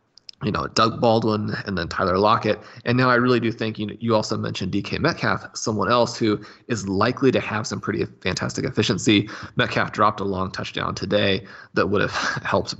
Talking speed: 195 wpm